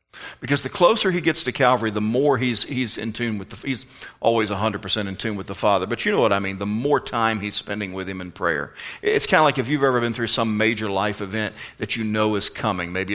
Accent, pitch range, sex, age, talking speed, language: American, 100-125 Hz, male, 40-59, 260 wpm, English